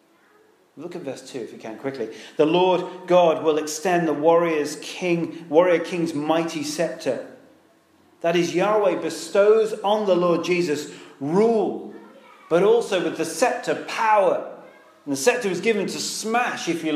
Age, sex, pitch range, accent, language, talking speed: 40-59, male, 145-195 Hz, British, English, 155 wpm